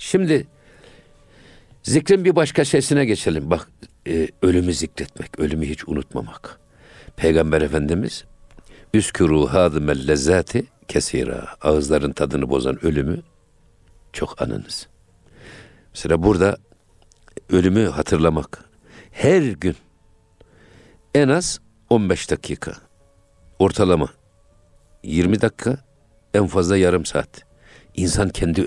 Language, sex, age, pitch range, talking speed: Turkish, male, 60-79, 80-105 Hz, 90 wpm